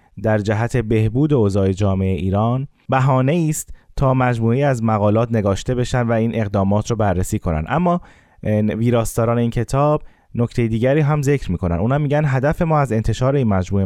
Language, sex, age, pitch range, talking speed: Persian, male, 20-39, 110-145 Hz, 160 wpm